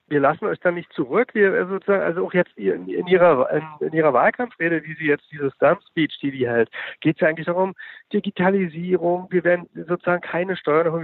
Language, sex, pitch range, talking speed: German, male, 150-185 Hz, 200 wpm